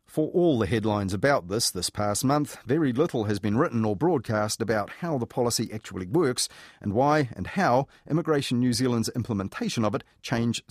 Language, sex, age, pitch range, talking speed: English, male, 40-59, 105-140 Hz, 185 wpm